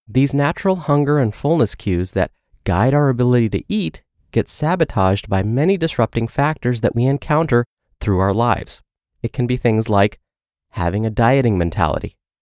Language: English